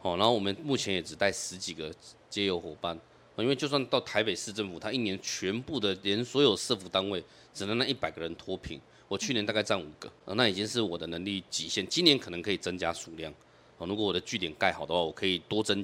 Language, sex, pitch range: Chinese, male, 90-115 Hz